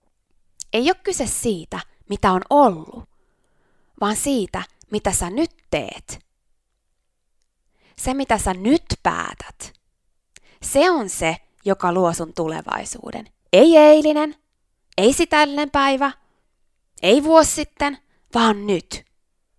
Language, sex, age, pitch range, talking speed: Finnish, female, 20-39, 190-300 Hz, 105 wpm